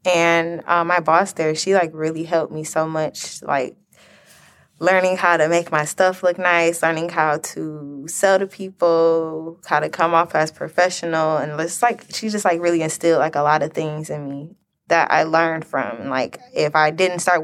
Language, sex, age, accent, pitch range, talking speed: English, female, 20-39, American, 155-180 Hz, 195 wpm